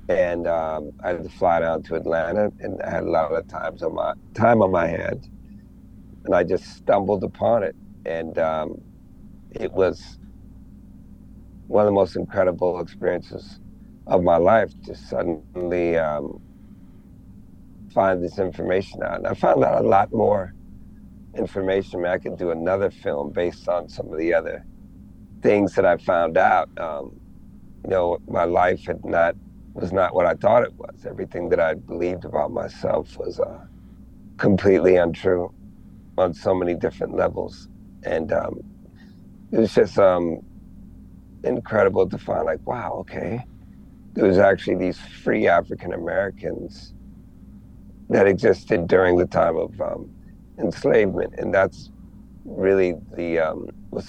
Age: 50-69